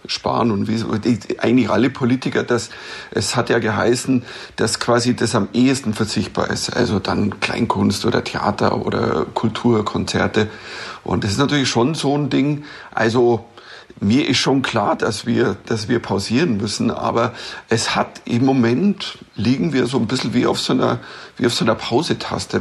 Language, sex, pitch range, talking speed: German, male, 115-130 Hz, 165 wpm